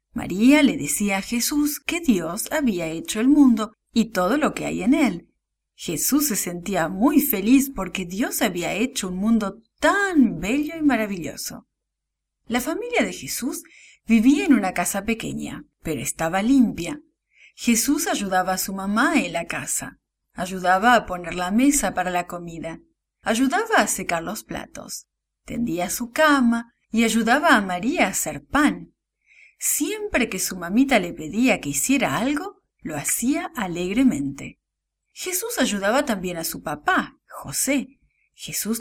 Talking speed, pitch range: 150 wpm, 185-280 Hz